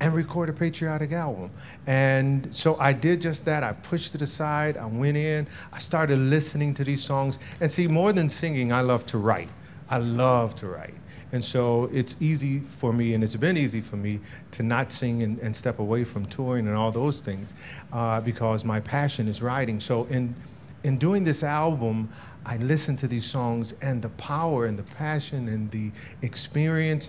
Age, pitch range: 40-59, 120-155 Hz